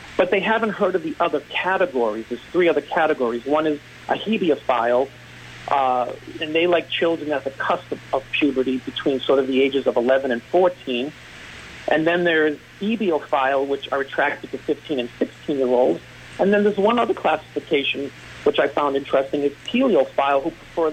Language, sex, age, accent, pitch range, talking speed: English, male, 40-59, American, 130-160 Hz, 175 wpm